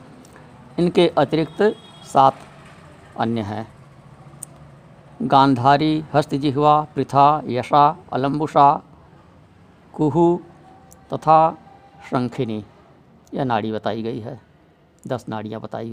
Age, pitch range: 50-69, 125-160 Hz